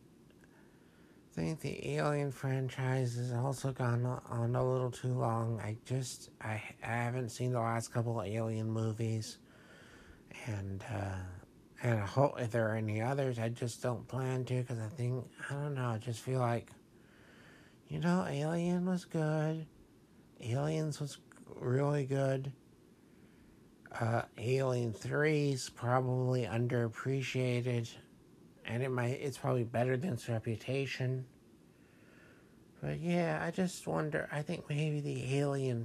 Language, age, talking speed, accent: English, 60-79, 140 wpm, American